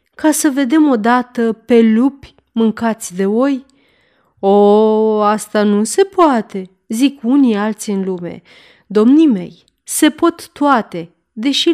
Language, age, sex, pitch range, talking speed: Romanian, 30-49, female, 205-275 Hz, 130 wpm